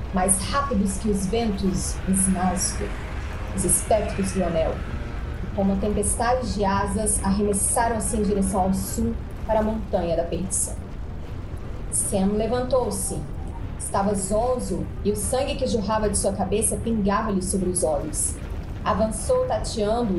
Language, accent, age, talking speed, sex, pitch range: Portuguese, Brazilian, 30-49, 130 wpm, female, 185-220 Hz